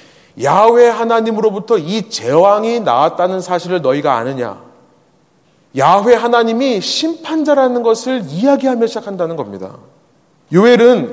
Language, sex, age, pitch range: Korean, male, 30-49, 170-255 Hz